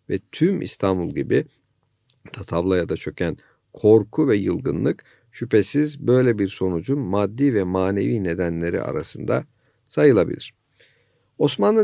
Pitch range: 100-140 Hz